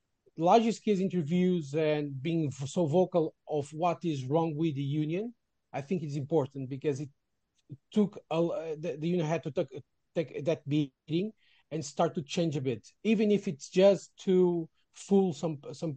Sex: male